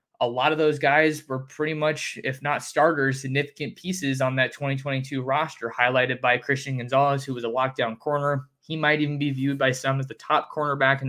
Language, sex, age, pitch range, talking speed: English, male, 20-39, 130-145 Hz, 205 wpm